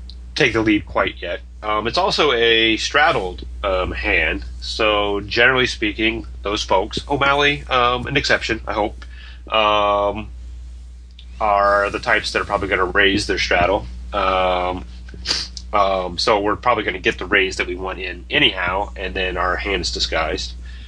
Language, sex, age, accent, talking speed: English, male, 30-49, American, 160 wpm